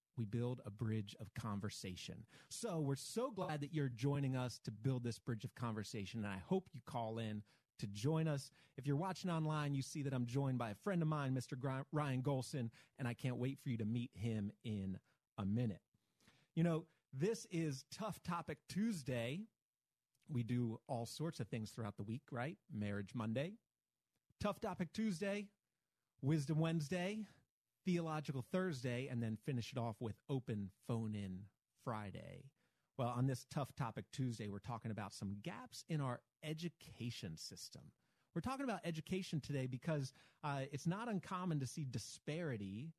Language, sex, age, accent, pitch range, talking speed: English, male, 30-49, American, 120-165 Hz, 170 wpm